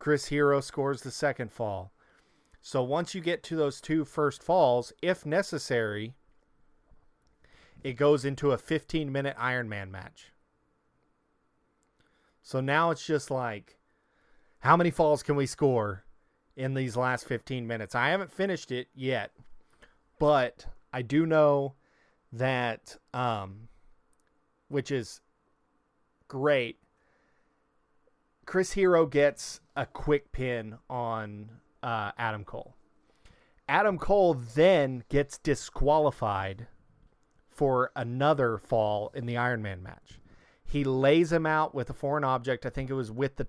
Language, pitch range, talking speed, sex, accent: English, 120-150 Hz, 125 wpm, male, American